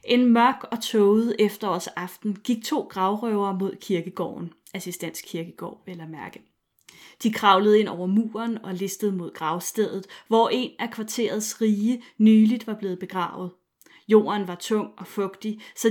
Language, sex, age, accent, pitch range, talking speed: Danish, female, 30-49, native, 185-230 Hz, 145 wpm